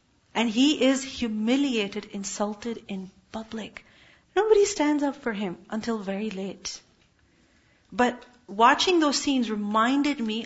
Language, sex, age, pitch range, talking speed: English, female, 40-59, 210-265 Hz, 120 wpm